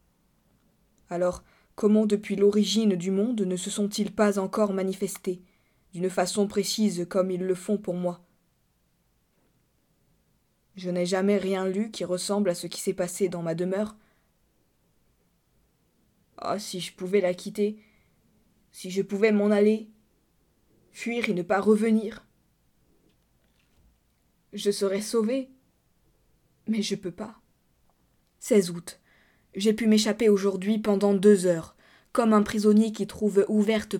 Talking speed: 130 wpm